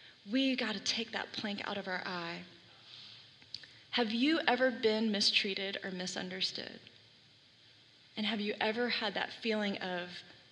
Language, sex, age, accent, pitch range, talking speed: English, female, 20-39, American, 180-245 Hz, 135 wpm